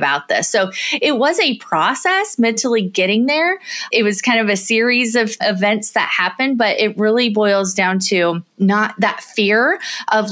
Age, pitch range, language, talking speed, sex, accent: 20-39, 180-230 Hz, English, 175 wpm, female, American